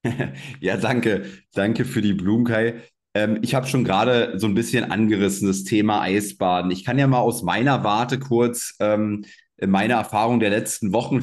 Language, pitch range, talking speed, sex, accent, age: German, 105-120 Hz, 165 wpm, male, German, 30-49